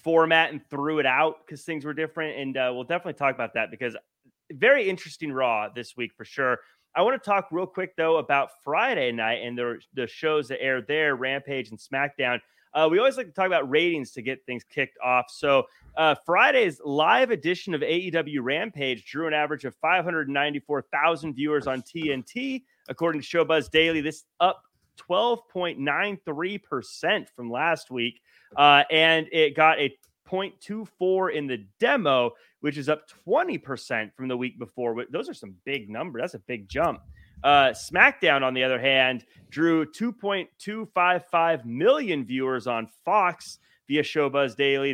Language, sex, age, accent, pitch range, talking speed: English, male, 30-49, American, 130-165 Hz, 170 wpm